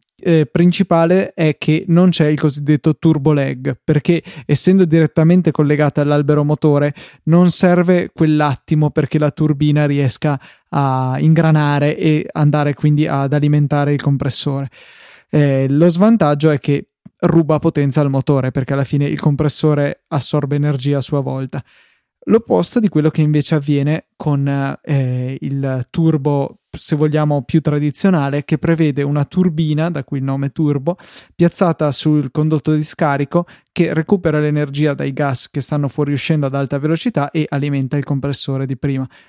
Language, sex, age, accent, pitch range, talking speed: Italian, male, 20-39, native, 140-160 Hz, 145 wpm